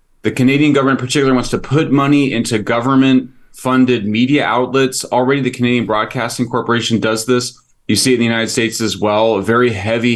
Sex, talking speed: male, 190 wpm